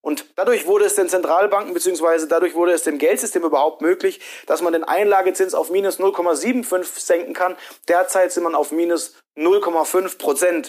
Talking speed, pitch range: 170 wpm, 185-300 Hz